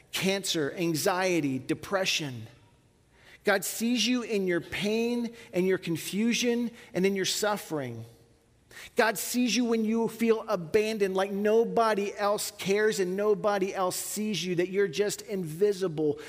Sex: male